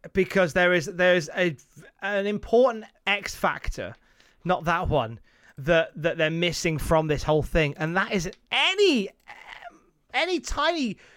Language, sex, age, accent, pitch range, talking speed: English, male, 30-49, British, 180-300 Hz, 140 wpm